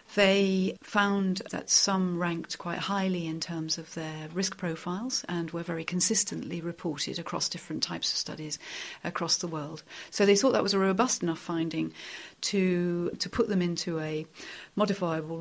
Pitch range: 165-195 Hz